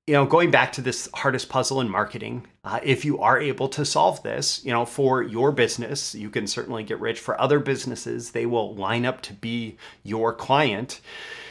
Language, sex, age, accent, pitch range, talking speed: English, male, 30-49, American, 115-140 Hz, 205 wpm